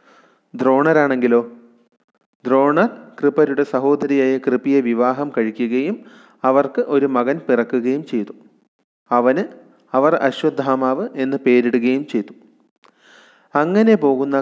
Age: 30-49